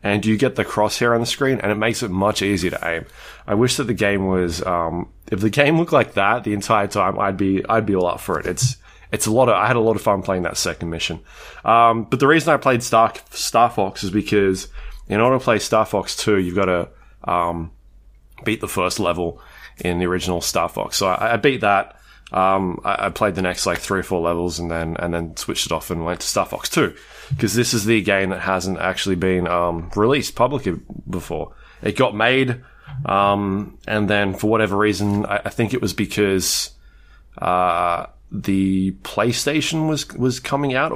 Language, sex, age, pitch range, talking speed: English, male, 20-39, 95-120 Hz, 220 wpm